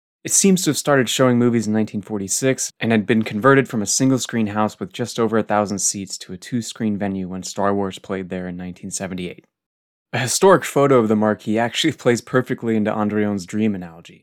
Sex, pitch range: male, 100-120 Hz